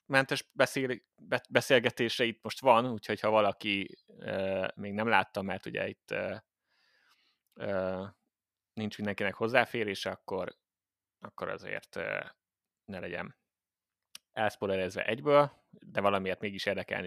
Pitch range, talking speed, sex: 95-120 Hz, 115 wpm, male